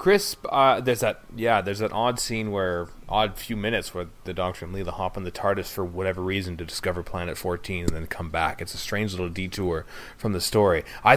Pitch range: 90-110 Hz